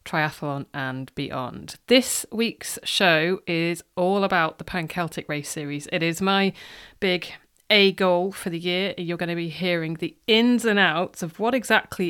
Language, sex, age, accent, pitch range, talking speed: English, female, 30-49, British, 165-195 Hz, 170 wpm